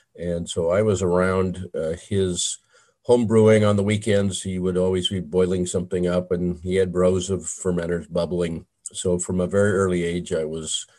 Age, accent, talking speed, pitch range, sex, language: 50-69, American, 185 wpm, 85-95 Hz, male, English